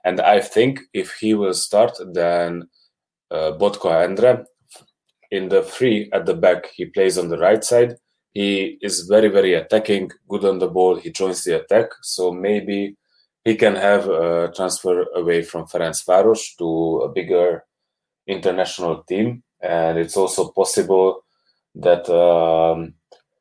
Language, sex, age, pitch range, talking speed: English, male, 20-39, 85-110 Hz, 145 wpm